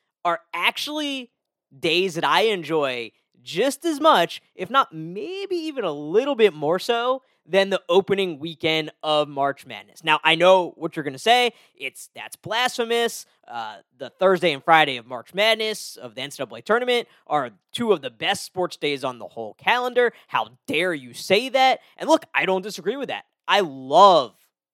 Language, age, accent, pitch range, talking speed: English, 20-39, American, 135-195 Hz, 175 wpm